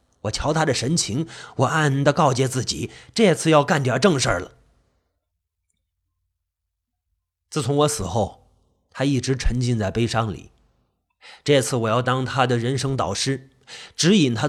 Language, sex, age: Chinese, male, 30-49